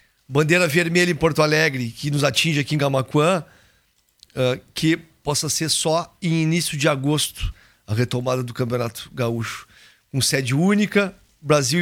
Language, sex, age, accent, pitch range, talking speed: Portuguese, male, 40-59, Brazilian, 130-165 Hz, 145 wpm